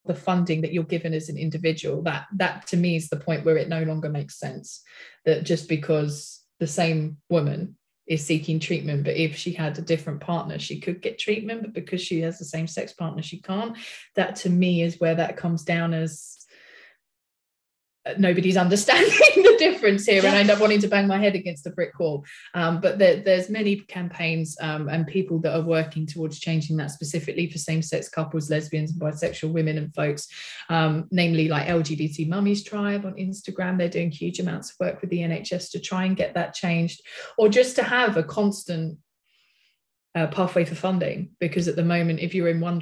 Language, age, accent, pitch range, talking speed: English, 20-39, British, 160-185 Hz, 200 wpm